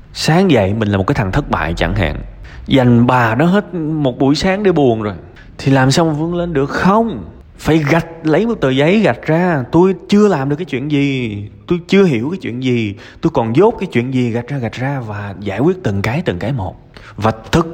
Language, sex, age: Vietnamese, male, 20-39